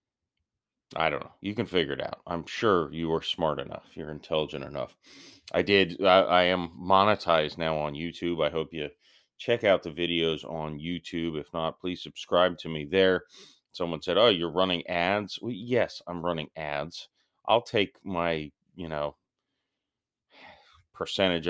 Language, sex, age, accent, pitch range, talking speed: English, male, 30-49, American, 80-95 Hz, 165 wpm